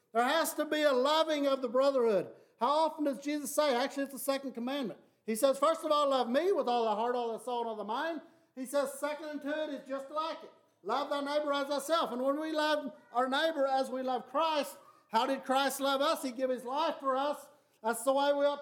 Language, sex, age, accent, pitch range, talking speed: English, male, 50-69, American, 250-290 Hz, 245 wpm